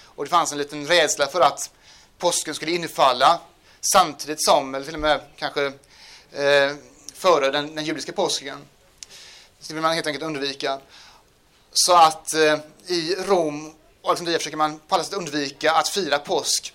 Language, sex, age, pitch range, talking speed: Swedish, male, 30-49, 140-165 Hz, 170 wpm